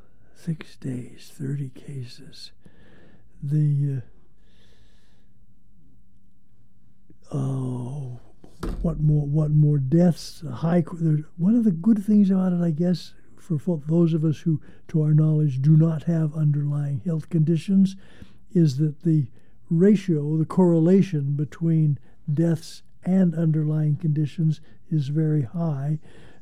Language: English